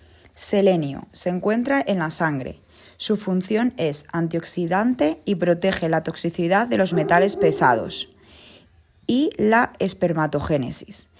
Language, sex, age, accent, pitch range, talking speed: Spanish, female, 20-39, Spanish, 160-205 Hz, 115 wpm